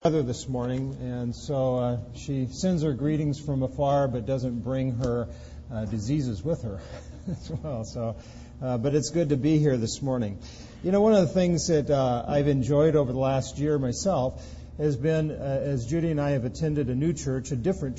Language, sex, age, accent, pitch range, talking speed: English, male, 50-69, American, 125-155 Hz, 200 wpm